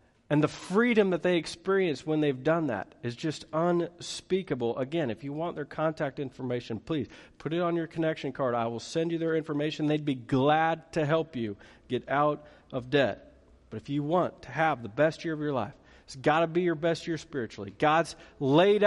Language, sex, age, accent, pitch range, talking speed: English, male, 40-59, American, 130-185 Hz, 205 wpm